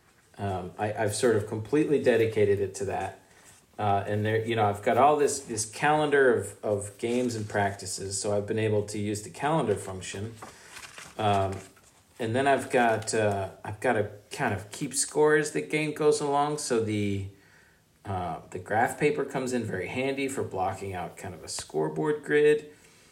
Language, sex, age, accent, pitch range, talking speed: English, male, 40-59, American, 100-120 Hz, 185 wpm